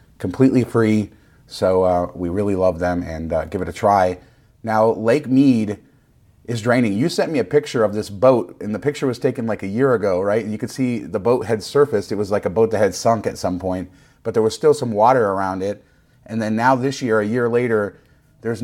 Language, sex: English, male